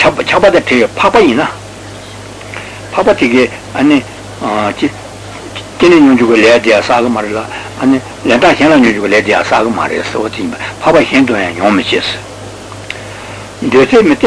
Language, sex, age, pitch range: Italian, male, 60-79, 105-140 Hz